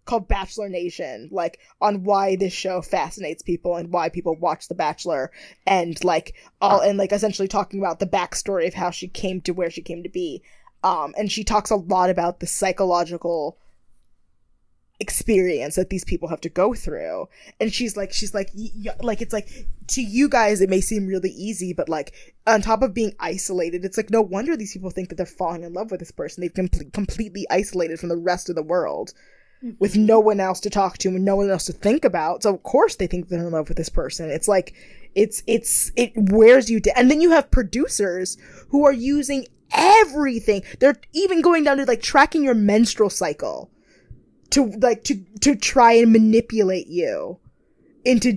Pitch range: 180-230 Hz